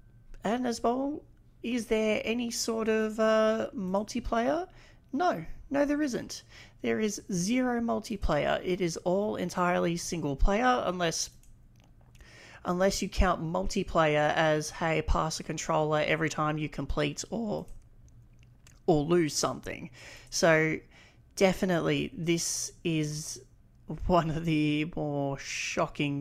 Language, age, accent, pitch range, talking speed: English, 40-59, Australian, 145-200 Hz, 115 wpm